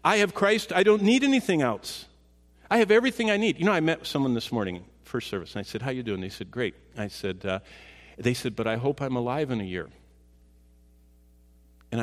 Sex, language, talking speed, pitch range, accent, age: male, English, 230 wpm, 85-135 Hz, American, 50-69